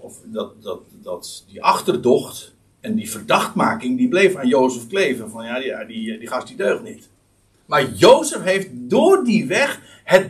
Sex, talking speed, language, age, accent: male, 170 wpm, Dutch, 60-79, Dutch